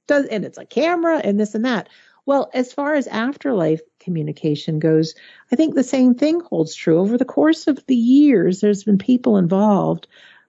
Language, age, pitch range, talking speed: English, 50-69, 175-240 Hz, 190 wpm